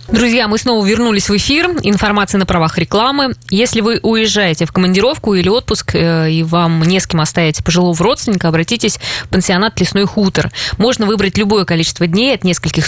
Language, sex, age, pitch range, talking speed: Russian, female, 20-39, 165-210 Hz, 170 wpm